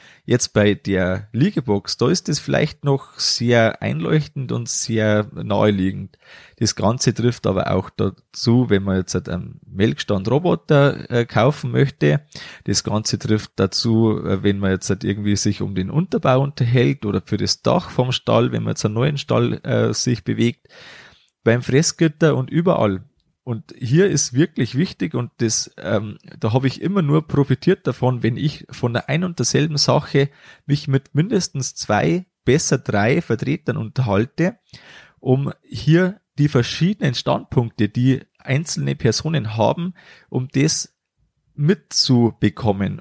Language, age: German, 30-49